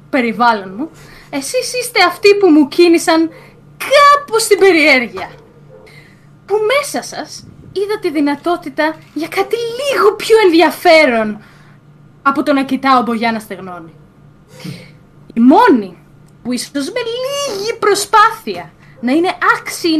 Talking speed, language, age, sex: 120 wpm, Greek, 20-39, female